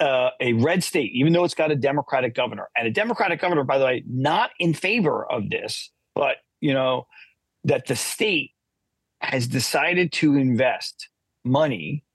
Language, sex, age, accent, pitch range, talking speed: English, male, 40-59, American, 115-145 Hz, 170 wpm